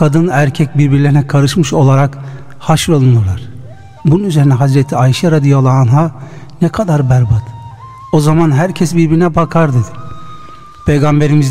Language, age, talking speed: Turkish, 60-79, 115 wpm